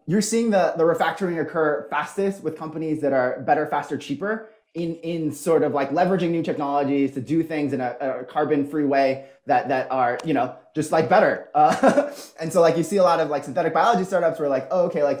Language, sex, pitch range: English, male, 135-165 Hz